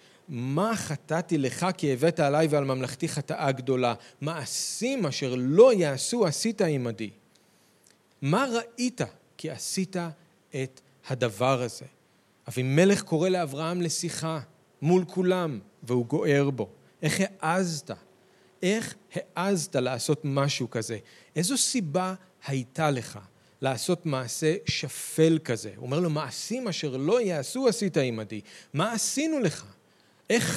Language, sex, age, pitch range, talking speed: Hebrew, male, 40-59, 135-185 Hz, 120 wpm